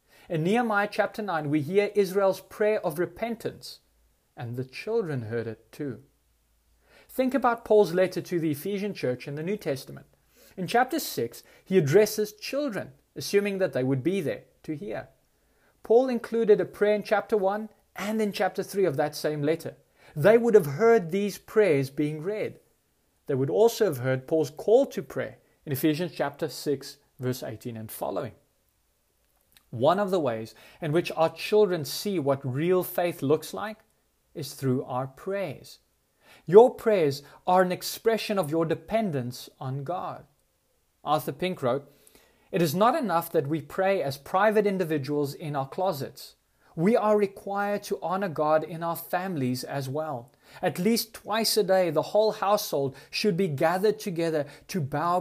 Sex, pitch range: male, 145-205 Hz